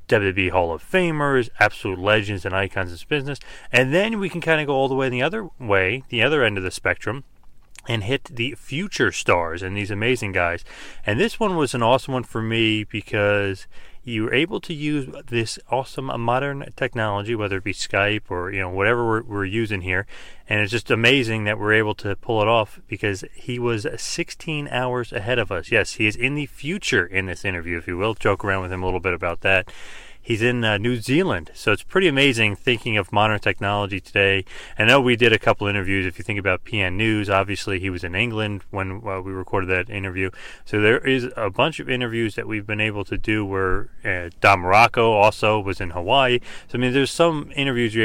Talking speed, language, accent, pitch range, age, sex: 220 wpm, English, American, 95-125 Hz, 30-49, male